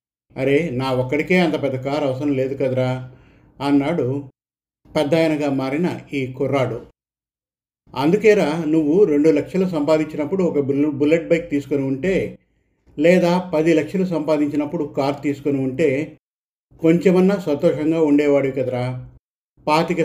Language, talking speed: Telugu, 115 wpm